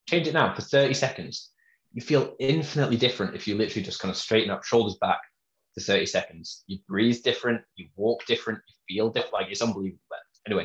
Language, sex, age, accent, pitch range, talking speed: English, male, 20-39, British, 95-120 Hz, 210 wpm